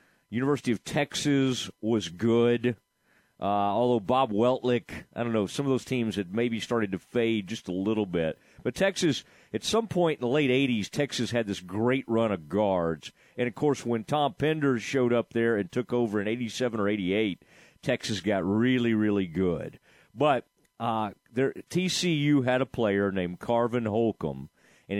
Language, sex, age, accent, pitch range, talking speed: English, male, 40-59, American, 105-130 Hz, 175 wpm